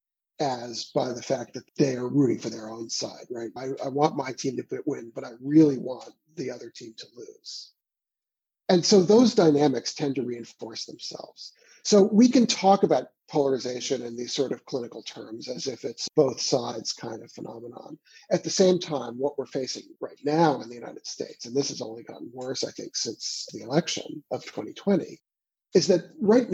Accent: American